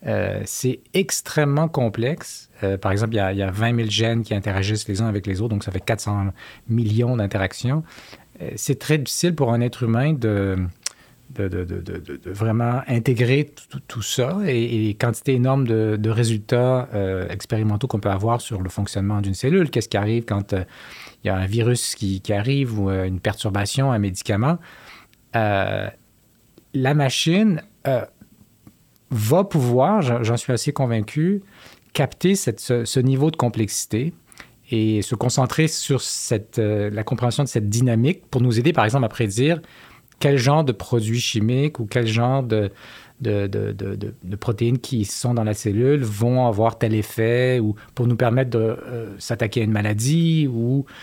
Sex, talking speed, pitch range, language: male, 180 wpm, 105-130 Hz, English